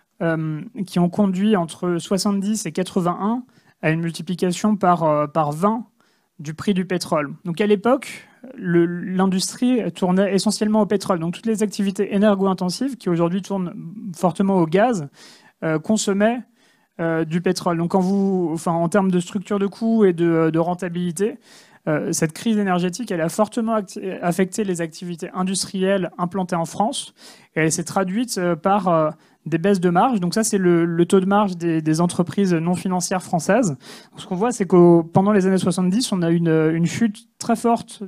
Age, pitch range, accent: 30-49, 170-210 Hz, French